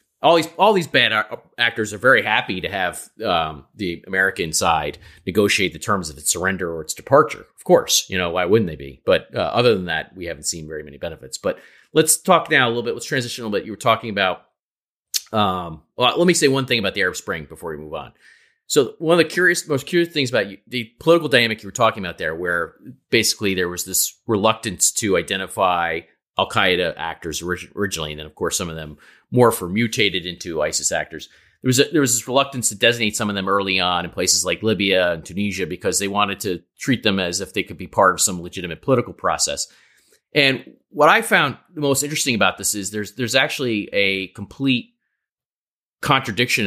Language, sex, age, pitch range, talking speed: English, male, 30-49, 90-130 Hz, 220 wpm